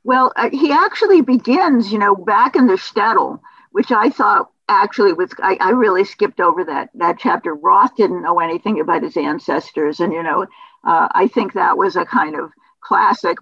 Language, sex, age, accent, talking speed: English, female, 60-79, American, 190 wpm